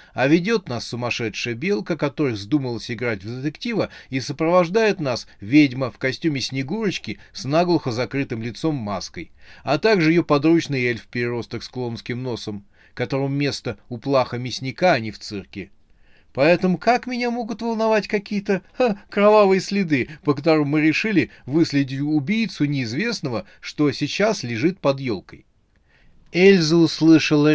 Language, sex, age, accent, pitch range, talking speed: Russian, male, 30-49, native, 115-165 Hz, 140 wpm